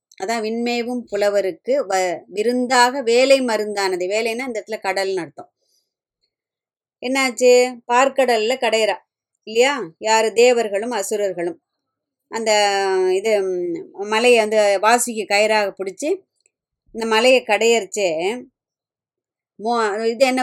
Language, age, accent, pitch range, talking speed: Tamil, 20-39, native, 200-245 Hz, 90 wpm